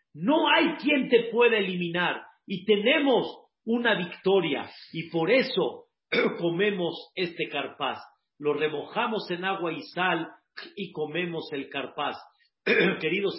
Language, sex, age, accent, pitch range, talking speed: Spanish, male, 50-69, Mexican, 160-225 Hz, 120 wpm